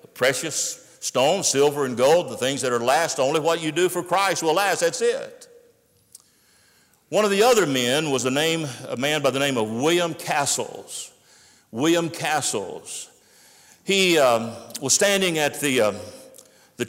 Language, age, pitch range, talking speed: English, 60-79, 115-155 Hz, 165 wpm